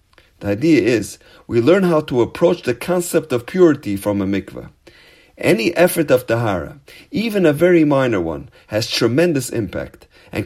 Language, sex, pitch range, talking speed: English, male, 115-170 Hz, 160 wpm